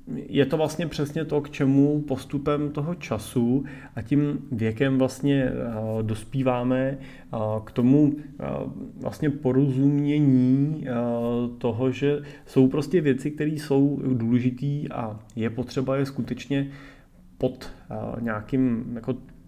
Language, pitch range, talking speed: Czech, 115-140 Hz, 125 wpm